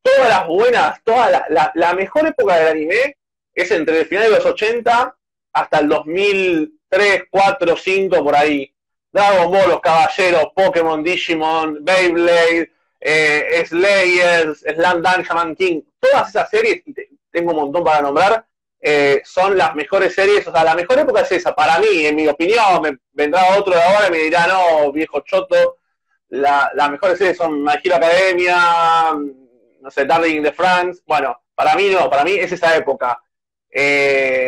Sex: male